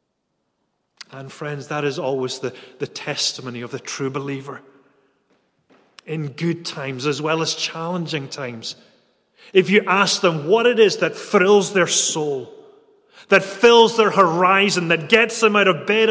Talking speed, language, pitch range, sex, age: 155 wpm, English, 145-195 Hz, male, 30-49